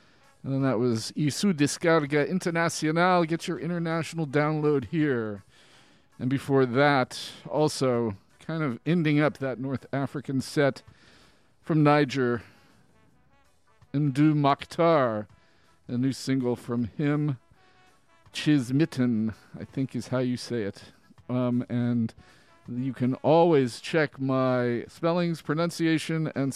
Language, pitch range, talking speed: English, 125-160 Hz, 115 wpm